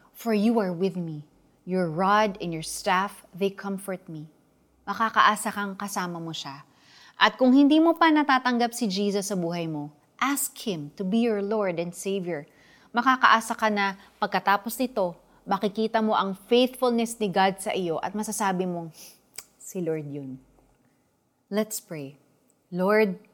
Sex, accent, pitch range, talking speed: female, native, 165-220 Hz, 155 wpm